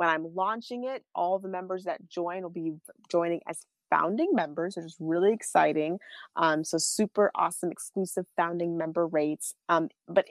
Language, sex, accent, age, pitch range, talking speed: English, female, American, 30-49, 160-185 Hz, 170 wpm